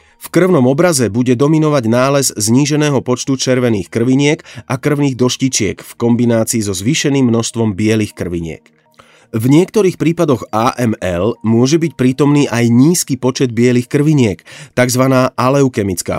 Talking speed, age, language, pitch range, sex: 125 wpm, 30-49, Slovak, 105-130 Hz, male